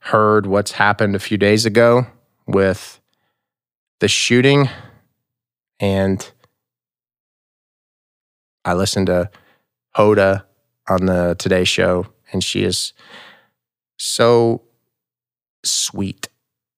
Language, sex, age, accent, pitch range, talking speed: English, male, 30-49, American, 95-115 Hz, 85 wpm